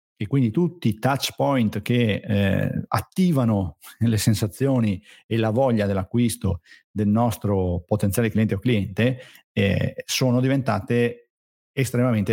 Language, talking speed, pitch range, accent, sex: Italian, 120 wpm, 105-120 Hz, native, male